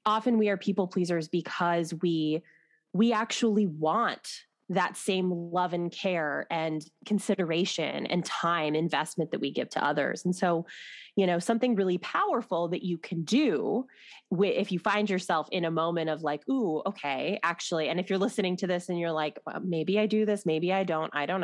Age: 20-39